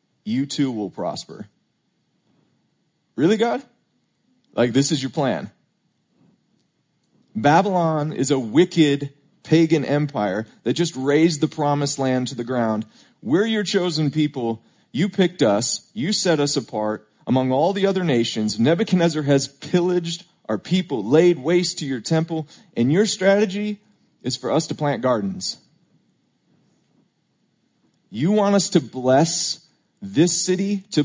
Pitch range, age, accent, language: 145-185 Hz, 30-49, American, English